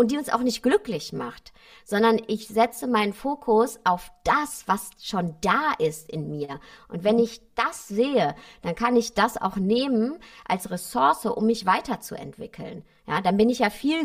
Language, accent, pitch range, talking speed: German, German, 190-230 Hz, 180 wpm